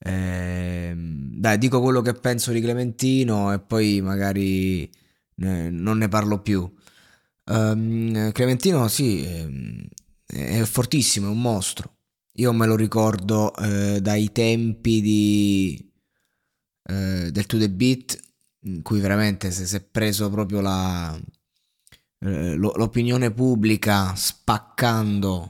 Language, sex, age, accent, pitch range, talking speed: Italian, male, 20-39, native, 95-115 Hz, 115 wpm